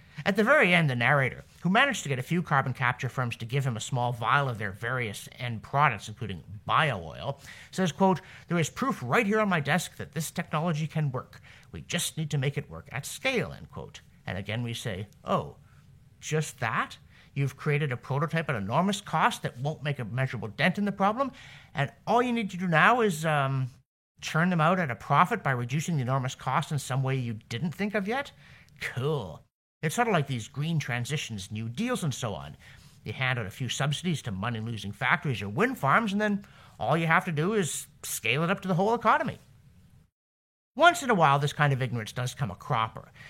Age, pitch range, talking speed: 50-69, 120-170 Hz, 220 wpm